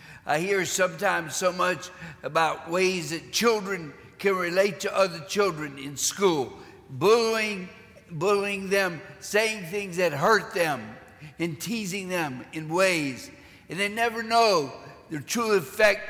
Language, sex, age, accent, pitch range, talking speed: English, male, 60-79, American, 155-200 Hz, 135 wpm